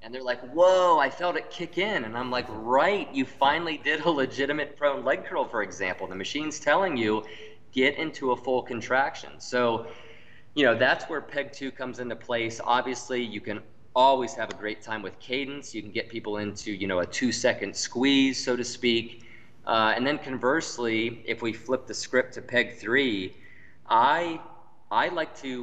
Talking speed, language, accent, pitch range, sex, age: 190 wpm, English, American, 110-135 Hz, male, 30-49